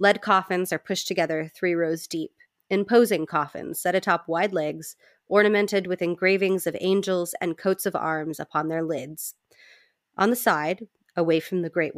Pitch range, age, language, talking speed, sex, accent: 155-195 Hz, 30-49, English, 165 wpm, female, American